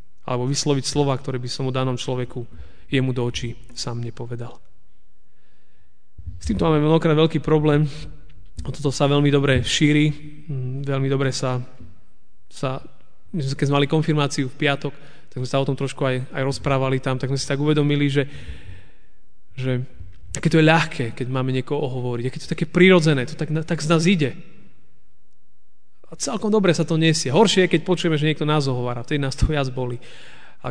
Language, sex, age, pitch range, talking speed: Slovak, male, 30-49, 125-155 Hz, 175 wpm